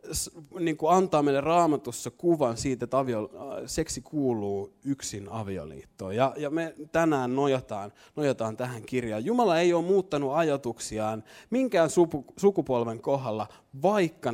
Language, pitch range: Finnish, 110-155 Hz